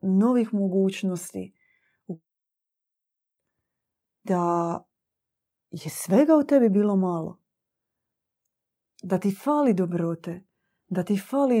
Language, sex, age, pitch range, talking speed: Croatian, female, 30-49, 175-220 Hz, 85 wpm